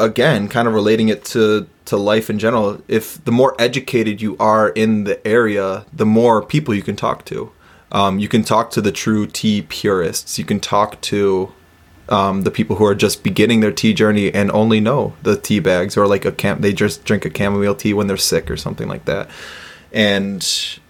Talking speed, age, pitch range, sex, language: 205 wpm, 20-39, 100-120 Hz, male, English